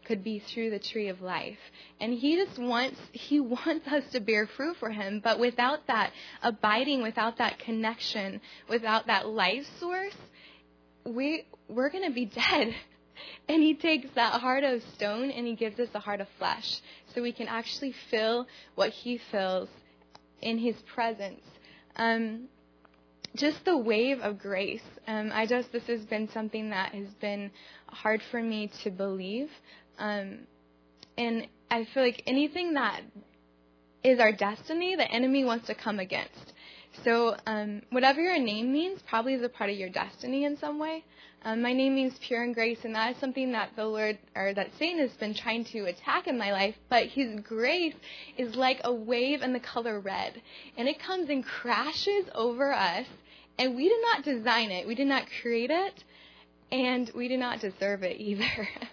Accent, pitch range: American, 215-265 Hz